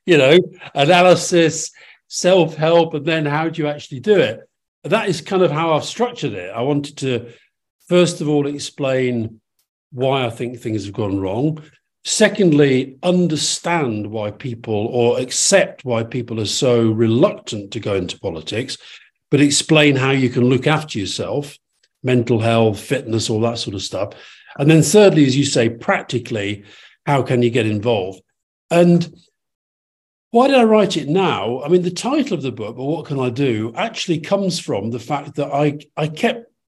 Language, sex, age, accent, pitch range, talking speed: English, male, 50-69, British, 120-175 Hz, 170 wpm